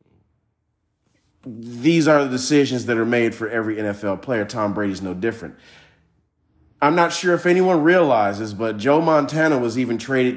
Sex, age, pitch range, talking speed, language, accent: male, 40-59, 105-150 Hz, 155 wpm, English, American